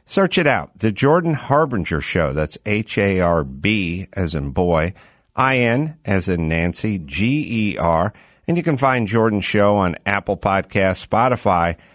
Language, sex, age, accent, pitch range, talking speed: English, male, 50-69, American, 95-145 Hz, 135 wpm